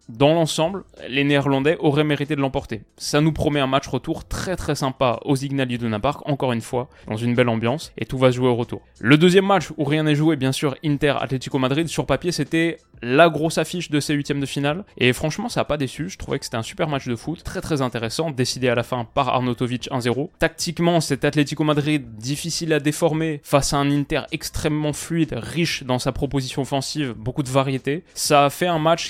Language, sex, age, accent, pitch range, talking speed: French, male, 20-39, French, 125-155 Hz, 225 wpm